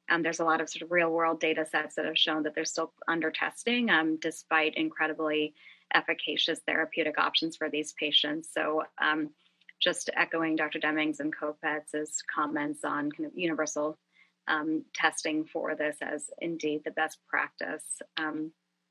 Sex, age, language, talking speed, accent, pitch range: female, 30-49, English, 160 wpm, American, 155-185 Hz